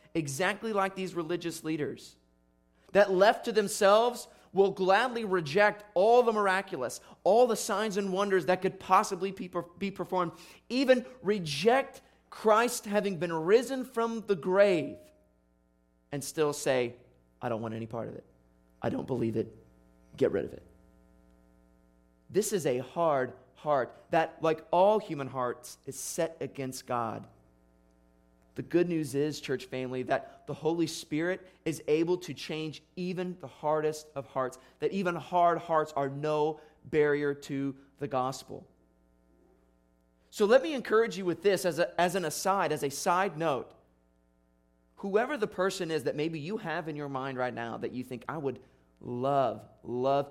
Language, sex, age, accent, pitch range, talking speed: English, male, 30-49, American, 115-185 Hz, 155 wpm